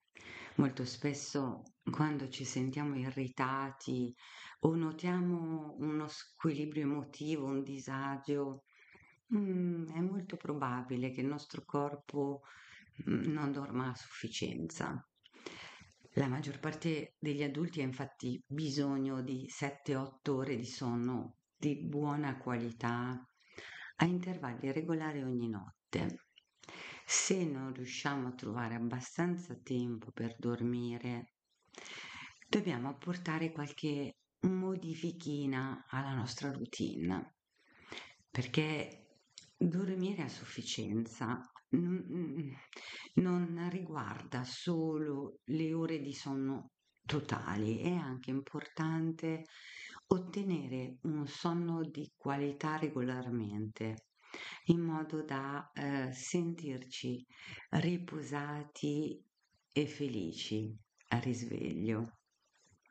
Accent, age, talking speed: native, 50-69, 90 wpm